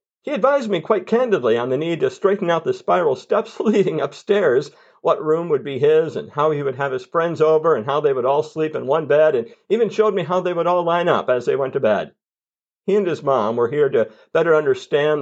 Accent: American